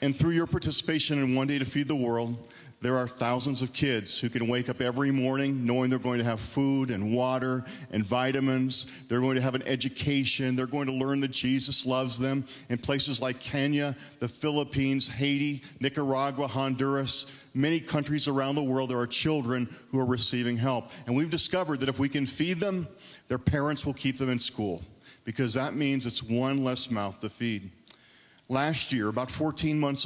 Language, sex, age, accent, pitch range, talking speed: English, male, 40-59, American, 125-145 Hz, 195 wpm